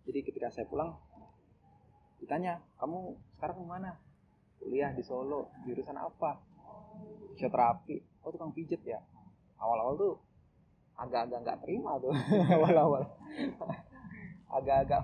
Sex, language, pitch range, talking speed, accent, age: male, Indonesian, 115-165 Hz, 105 wpm, native, 20-39